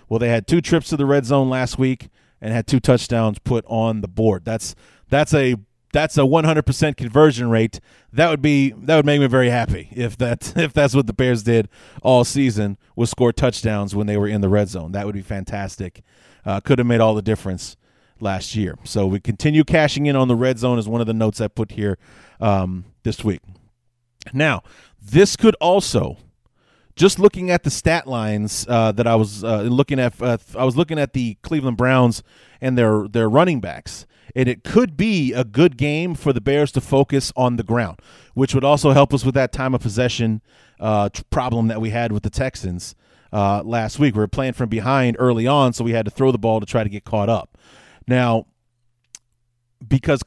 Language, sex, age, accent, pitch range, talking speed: English, male, 30-49, American, 110-140 Hz, 215 wpm